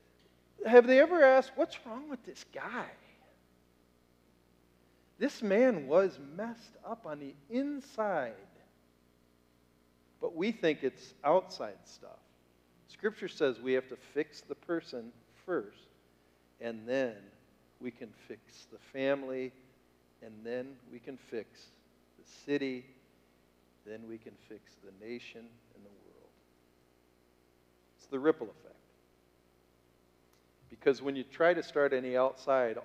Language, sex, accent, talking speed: English, male, American, 120 wpm